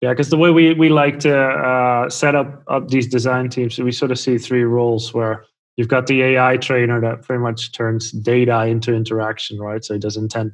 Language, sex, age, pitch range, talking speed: English, male, 20-39, 115-130 Hz, 220 wpm